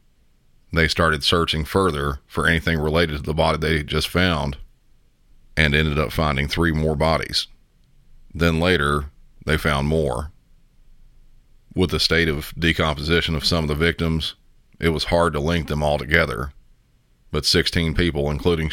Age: 40-59